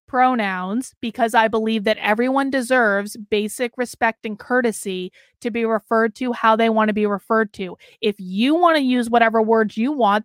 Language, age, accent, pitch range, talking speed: English, 30-49, American, 220-275 Hz, 180 wpm